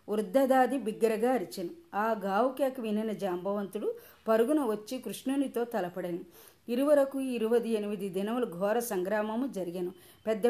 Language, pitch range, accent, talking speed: Telugu, 200-250 Hz, native, 110 wpm